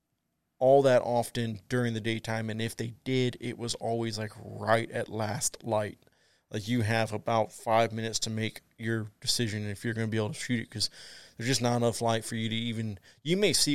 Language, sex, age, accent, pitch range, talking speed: English, male, 20-39, American, 105-120 Hz, 225 wpm